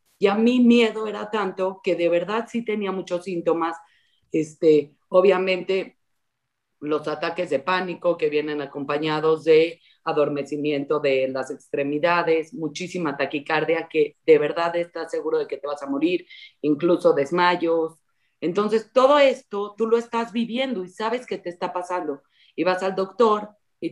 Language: Spanish